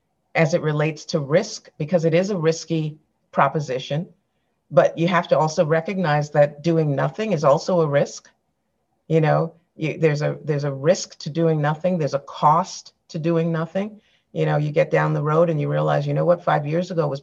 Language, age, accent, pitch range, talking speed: English, 50-69, American, 145-175 Hz, 200 wpm